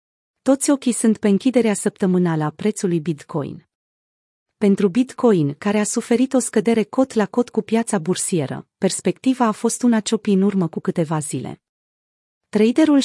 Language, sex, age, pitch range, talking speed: Romanian, female, 30-49, 180-225 Hz, 150 wpm